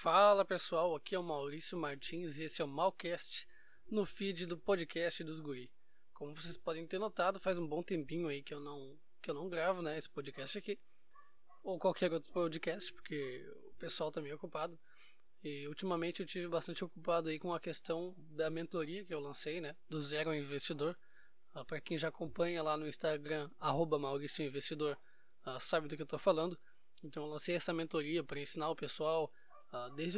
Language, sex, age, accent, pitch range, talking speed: Portuguese, male, 20-39, Brazilian, 150-180 Hz, 190 wpm